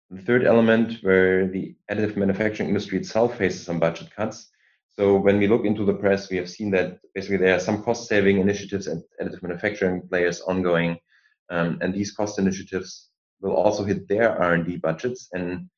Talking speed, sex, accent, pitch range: 180 wpm, male, German, 90-105 Hz